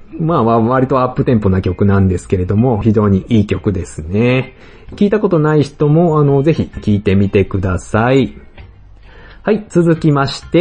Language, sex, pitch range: Japanese, male, 100-155 Hz